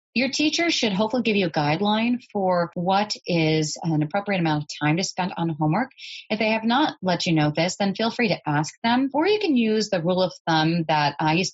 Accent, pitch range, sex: American, 155-215 Hz, female